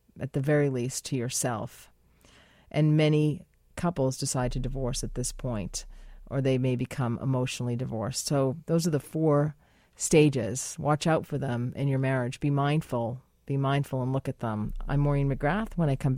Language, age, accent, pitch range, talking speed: English, 40-59, American, 140-230 Hz, 180 wpm